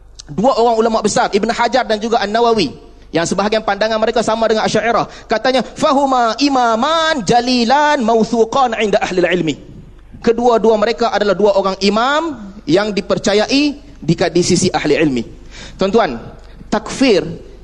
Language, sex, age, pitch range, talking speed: Malay, male, 30-49, 200-265 Hz, 135 wpm